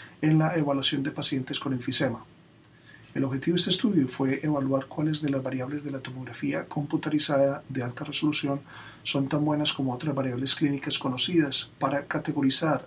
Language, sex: Spanish, male